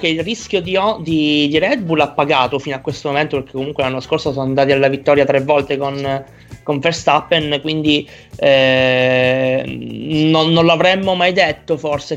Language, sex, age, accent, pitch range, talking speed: Italian, male, 20-39, native, 130-155 Hz, 175 wpm